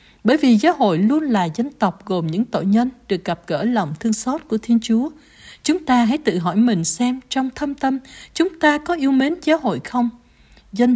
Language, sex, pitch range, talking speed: Vietnamese, female, 200-280 Hz, 220 wpm